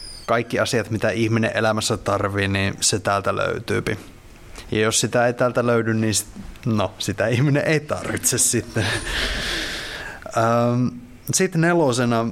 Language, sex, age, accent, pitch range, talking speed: Finnish, male, 20-39, native, 100-120 Hz, 115 wpm